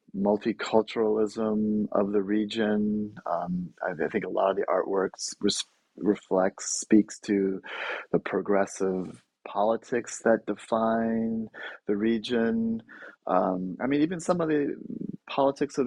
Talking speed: 120 wpm